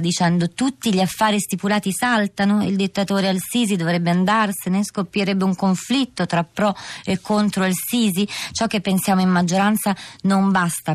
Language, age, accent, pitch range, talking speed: Italian, 30-49, native, 155-190 Hz, 140 wpm